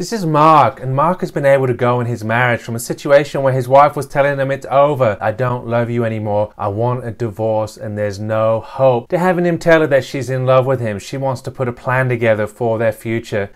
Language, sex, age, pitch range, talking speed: English, male, 30-49, 120-160 Hz, 255 wpm